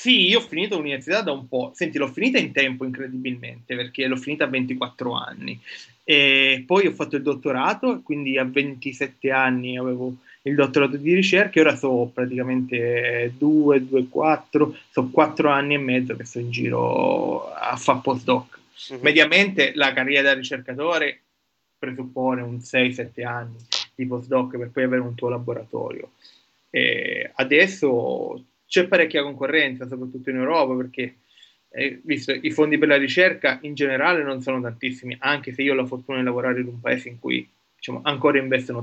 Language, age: Italian, 20-39